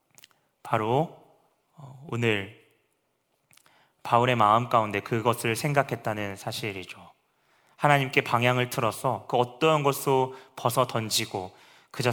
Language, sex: Korean, male